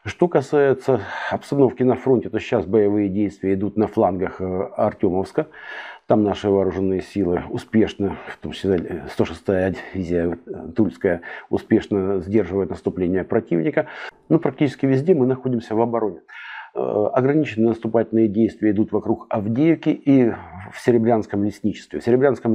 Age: 50-69